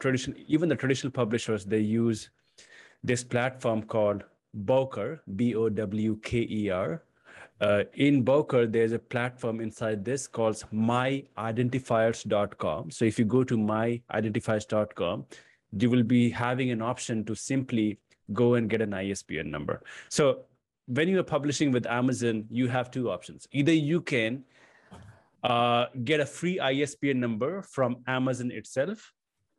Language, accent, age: English, Indian, 30-49